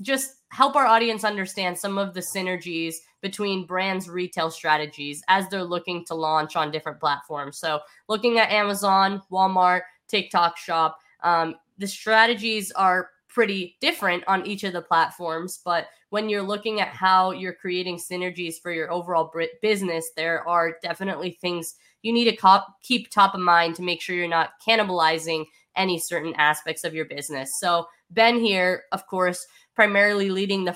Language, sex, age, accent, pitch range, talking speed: English, female, 20-39, American, 165-195 Hz, 160 wpm